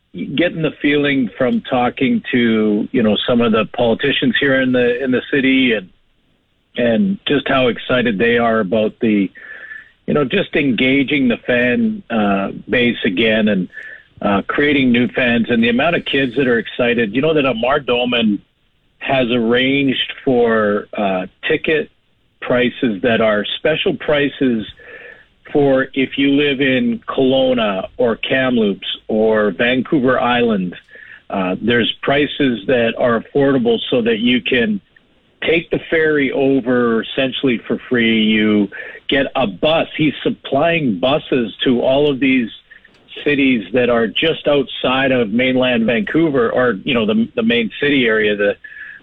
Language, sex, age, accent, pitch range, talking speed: English, male, 50-69, American, 115-145 Hz, 145 wpm